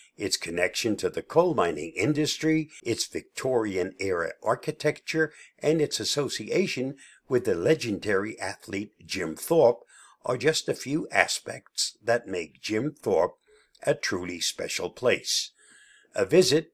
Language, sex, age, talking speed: English, male, 60-79, 120 wpm